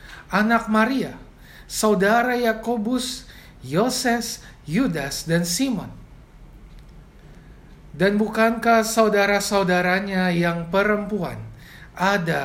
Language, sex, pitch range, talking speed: Indonesian, male, 140-185 Hz, 65 wpm